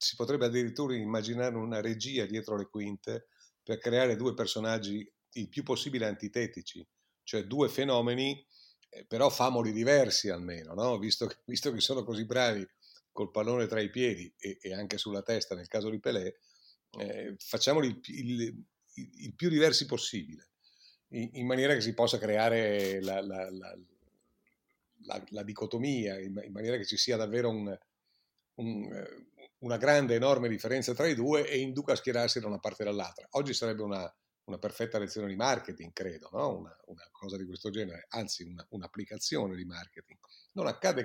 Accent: native